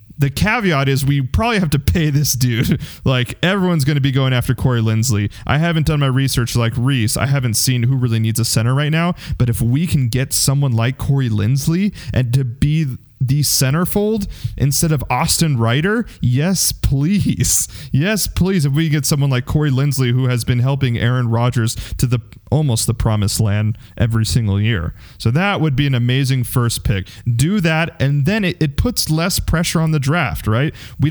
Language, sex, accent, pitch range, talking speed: English, male, American, 115-150 Hz, 195 wpm